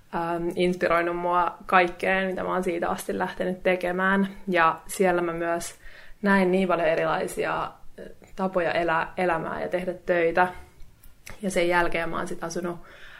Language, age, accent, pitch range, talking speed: Finnish, 20-39, native, 175-195 Hz, 140 wpm